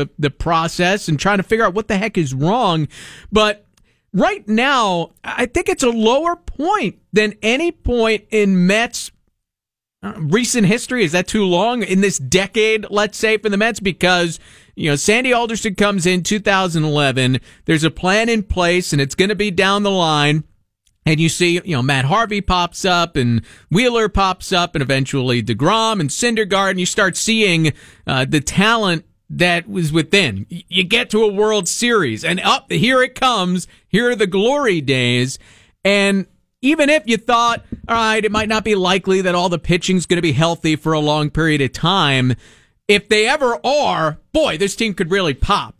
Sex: male